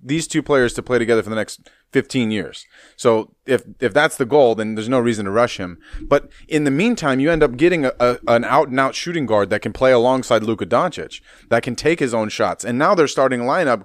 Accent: American